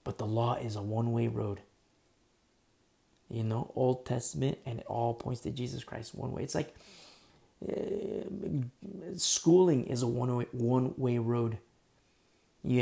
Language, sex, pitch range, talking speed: English, male, 115-140 Hz, 135 wpm